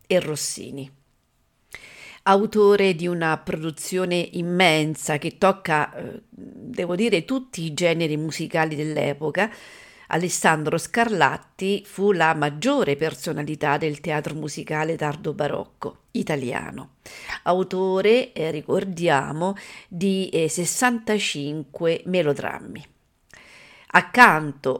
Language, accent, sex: Italian, native, female